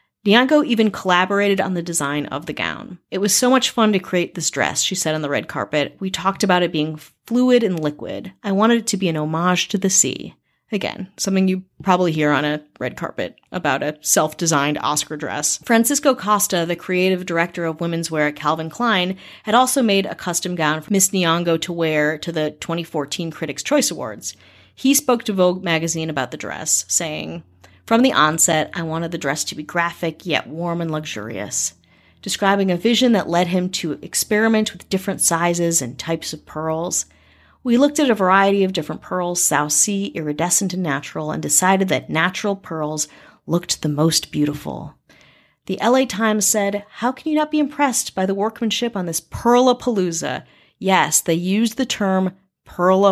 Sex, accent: female, American